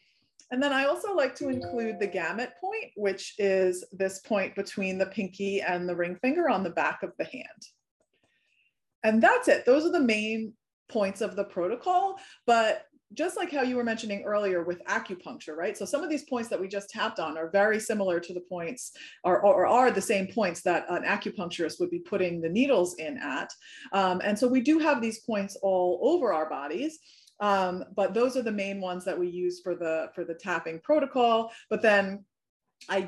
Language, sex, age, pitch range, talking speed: English, female, 30-49, 180-240 Hz, 205 wpm